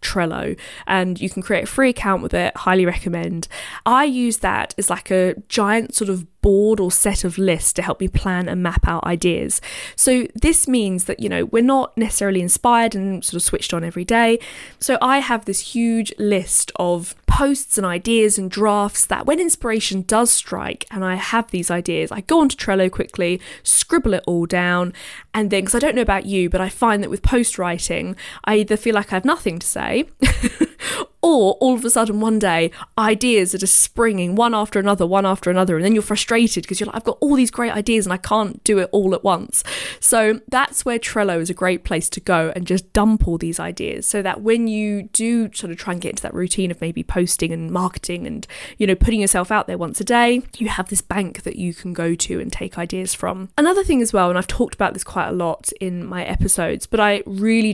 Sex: female